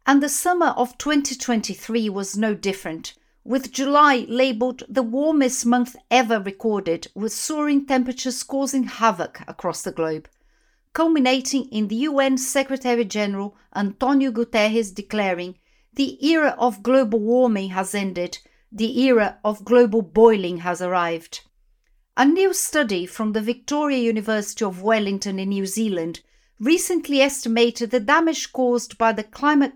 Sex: female